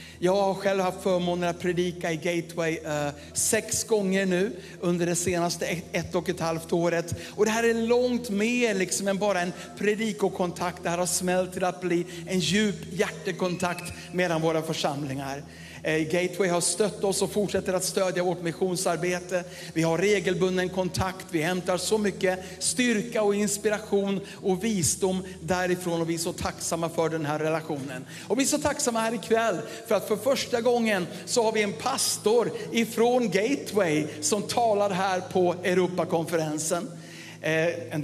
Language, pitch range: English, 170-205 Hz